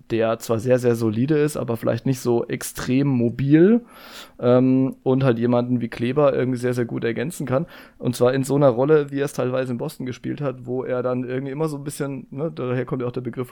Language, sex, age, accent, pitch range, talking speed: German, male, 20-39, German, 125-140 Hz, 235 wpm